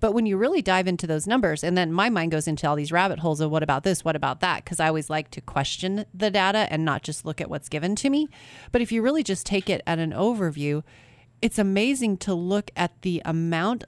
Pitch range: 150-200 Hz